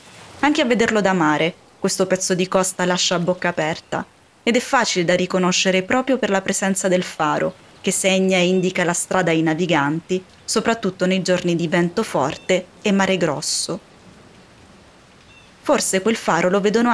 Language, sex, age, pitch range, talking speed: Italian, female, 20-39, 180-210 Hz, 165 wpm